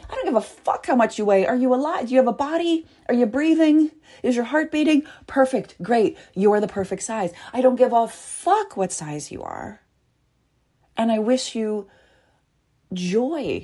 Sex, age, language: female, 30-49, English